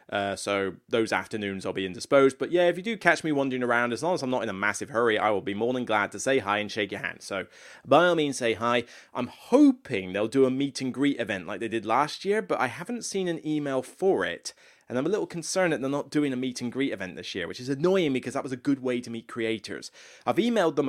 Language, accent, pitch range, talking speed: English, British, 115-175 Hz, 265 wpm